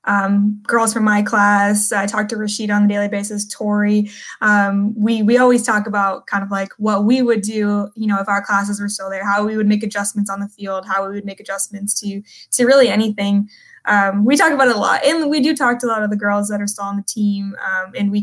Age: 10-29